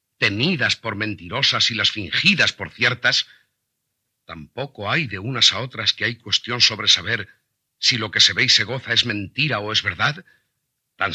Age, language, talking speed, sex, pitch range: 50-69, Spanish, 180 wpm, male, 100-125 Hz